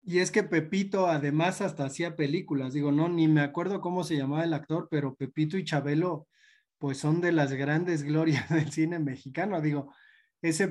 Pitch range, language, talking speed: 145-180 Hz, Spanish, 185 wpm